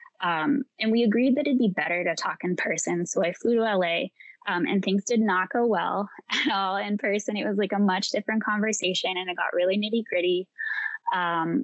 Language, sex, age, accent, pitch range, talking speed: English, female, 10-29, American, 175-210 Hz, 215 wpm